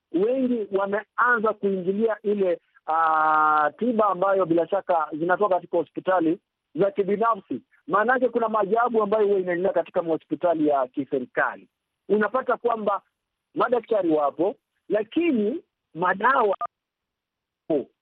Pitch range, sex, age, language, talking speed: 190-240 Hz, male, 50-69, Swahili, 105 wpm